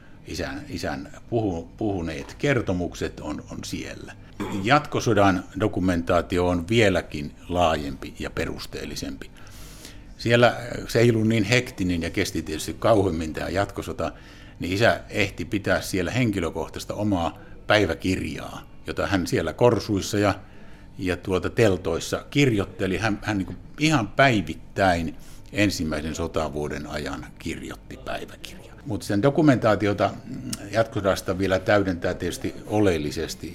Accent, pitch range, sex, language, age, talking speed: native, 85-110 Hz, male, Finnish, 60-79, 110 wpm